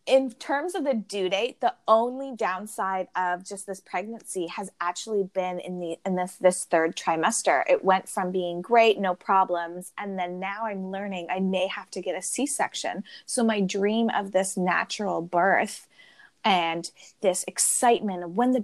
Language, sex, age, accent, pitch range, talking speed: English, female, 20-39, American, 180-230 Hz, 175 wpm